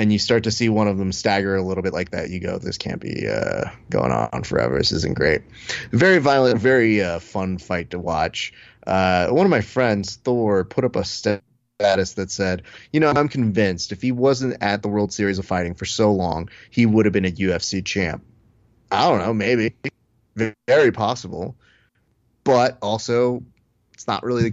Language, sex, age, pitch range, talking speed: English, male, 30-49, 100-125 Hz, 200 wpm